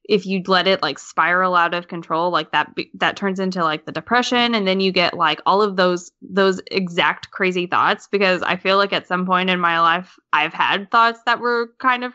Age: 10-29